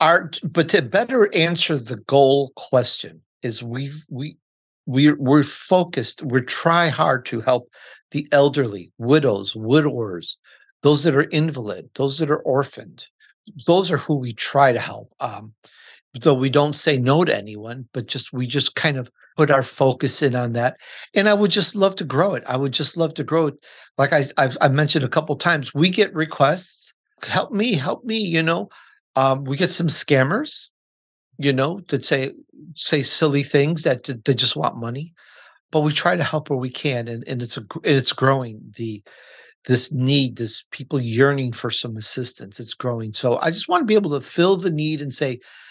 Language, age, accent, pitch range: English, 50-69, American, 130-165 Hz